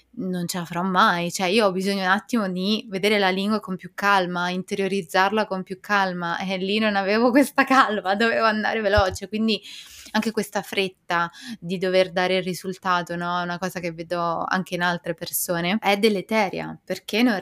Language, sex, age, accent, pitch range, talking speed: Italian, female, 20-39, native, 180-215 Hz, 185 wpm